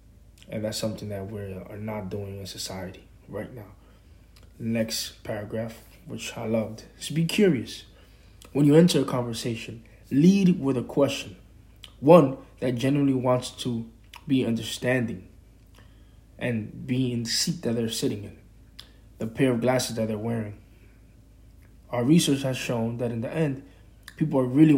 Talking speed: 150 wpm